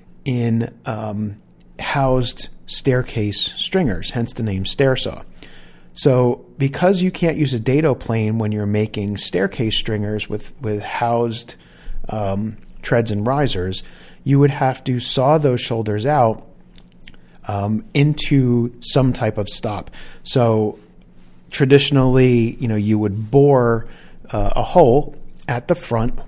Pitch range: 100-125 Hz